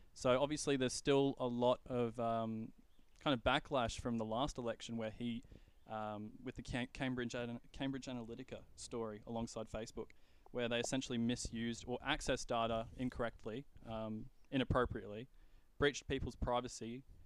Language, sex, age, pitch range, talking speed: English, male, 20-39, 115-130 Hz, 145 wpm